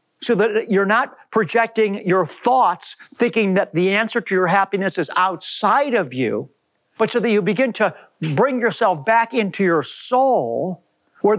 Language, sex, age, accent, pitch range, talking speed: English, male, 50-69, American, 180-230 Hz, 165 wpm